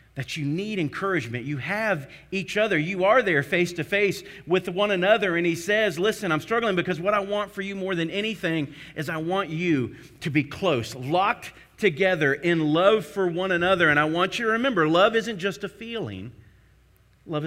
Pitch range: 155-210 Hz